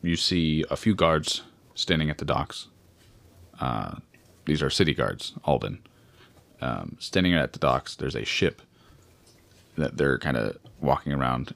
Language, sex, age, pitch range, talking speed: English, male, 30-49, 80-110 Hz, 150 wpm